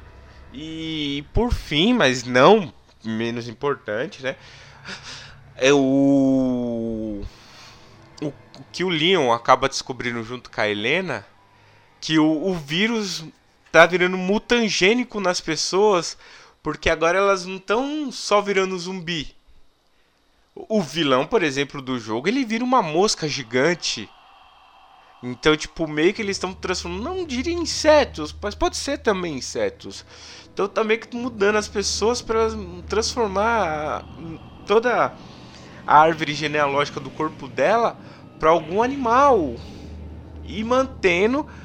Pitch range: 140-210 Hz